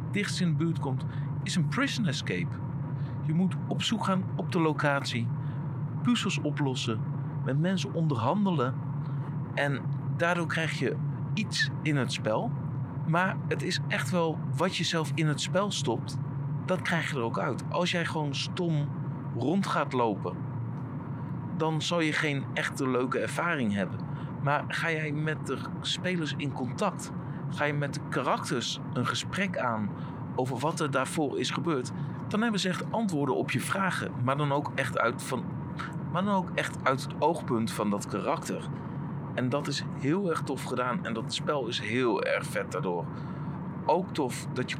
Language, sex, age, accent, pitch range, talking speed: Dutch, male, 50-69, Dutch, 135-160 Hz, 165 wpm